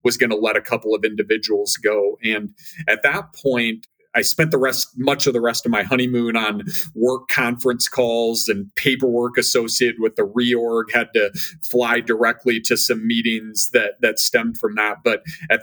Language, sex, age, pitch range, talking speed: English, male, 40-59, 110-135 Hz, 185 wpm